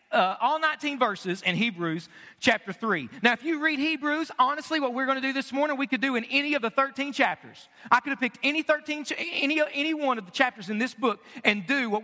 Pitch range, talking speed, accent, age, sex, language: 220-275 Hz, 230 wpm, American, 40-59, male, English